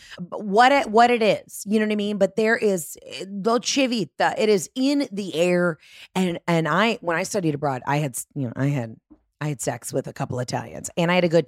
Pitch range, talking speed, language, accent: 145-200 Hz, 240 wpm, English, American